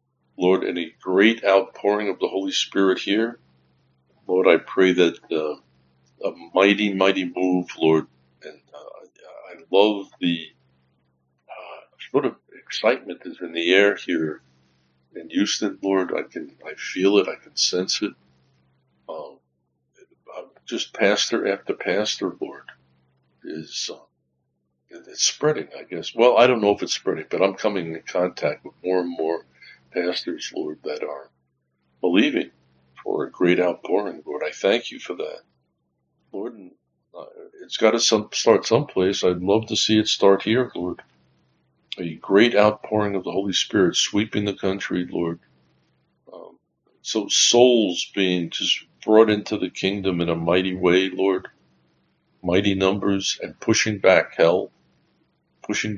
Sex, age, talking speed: male, 60-79, 145 wpm